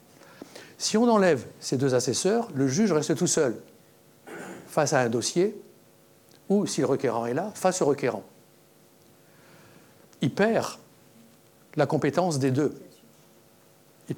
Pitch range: 130-170 Hz